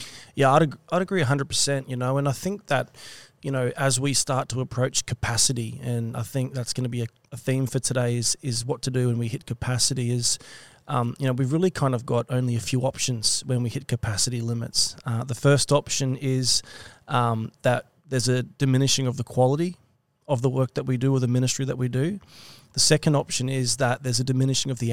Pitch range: 125-135 Hz